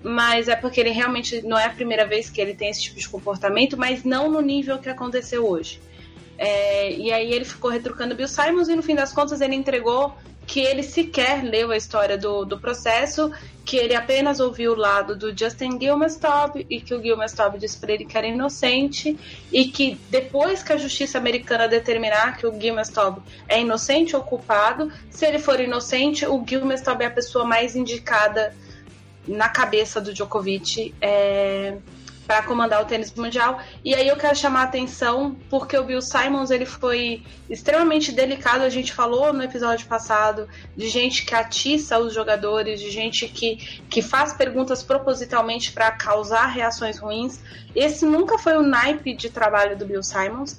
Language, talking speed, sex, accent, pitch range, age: Portuguese, 175 wpm, female, Brazilian, 220-275 Hz, 20-39